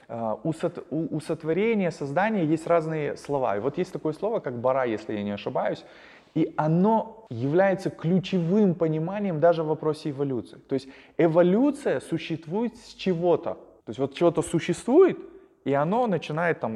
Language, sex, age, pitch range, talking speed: Russian, male, 20-39, 130-170 Hz, 150 wpm